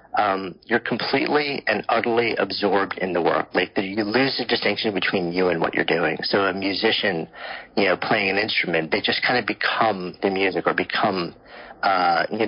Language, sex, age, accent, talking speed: English, male, 40-59, American, 190 wpm